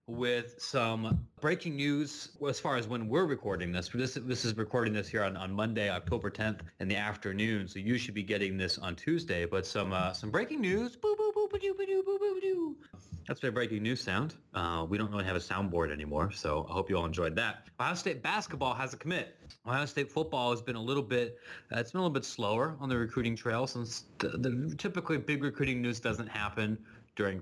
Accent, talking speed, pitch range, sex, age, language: American, 210 wpm, 105-140 Hz, male, 30-49, English